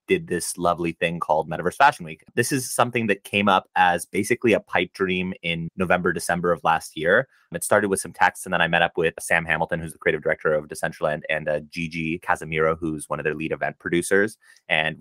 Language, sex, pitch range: English, male, 85-110 Hz